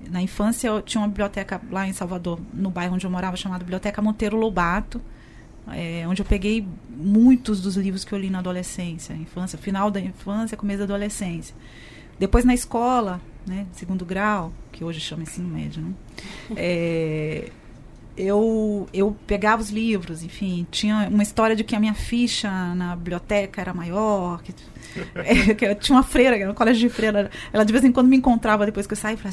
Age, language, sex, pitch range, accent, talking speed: 30-49, Portuguese, female, 180-220 Hz, Brazilian, 180 wpm